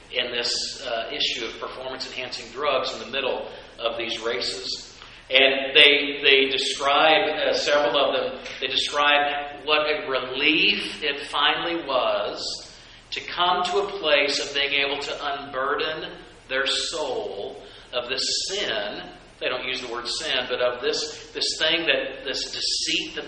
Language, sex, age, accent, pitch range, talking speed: English, male, 40-59, American, 120-150 Hz, 150 wpm